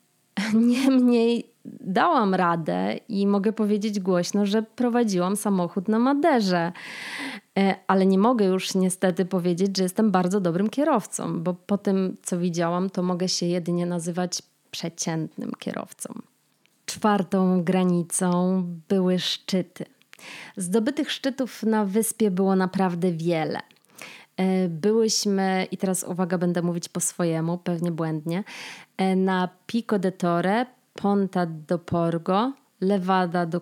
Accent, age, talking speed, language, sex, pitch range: native, 20-39, 115 wpm, Polish, female, 175-215 Hz